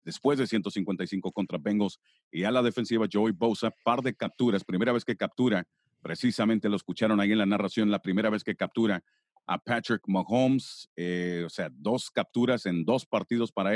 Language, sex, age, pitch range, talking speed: English, male, 40-59, 100-120 Hz, 185 wpm